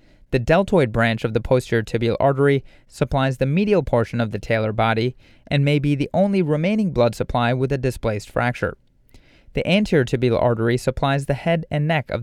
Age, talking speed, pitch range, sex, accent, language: 30-49, 185 wpm, 120-155 Hz, male, American, English